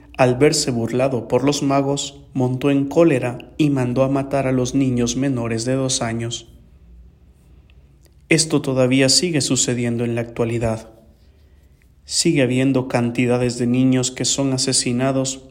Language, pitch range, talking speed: English, 115-140 Hz, 135 wpm